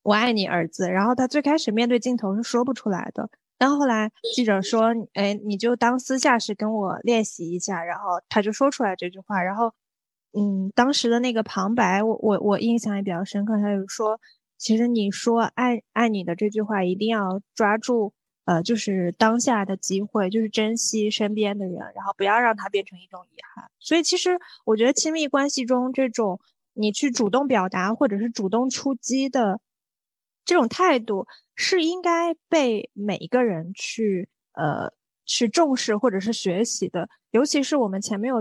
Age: 20-39